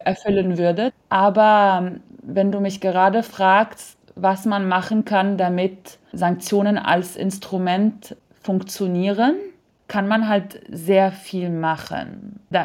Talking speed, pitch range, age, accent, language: 115 wpm, 170-200 Hz, 20-39, German, German